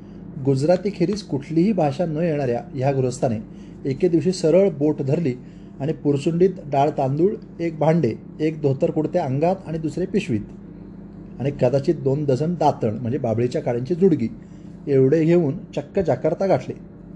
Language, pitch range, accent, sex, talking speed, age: Marathi, 130-180 Hz, native, male, 140 wpm, 30-49